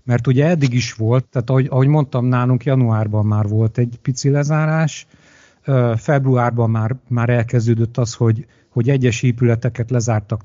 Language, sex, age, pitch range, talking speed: Hungarian, male, 50-69, 115-140 Hz, 150 wpm